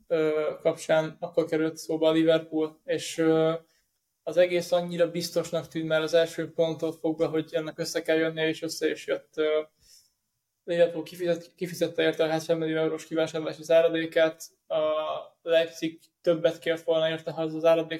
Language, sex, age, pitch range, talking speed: Hungarian, male, 20-39, 155-165 Hz, 150 wpm